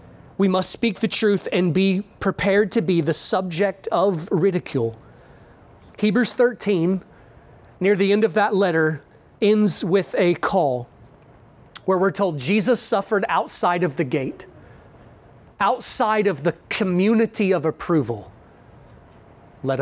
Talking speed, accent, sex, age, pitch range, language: 125 wpm, American, male, 30-49, 145-215 Hz, English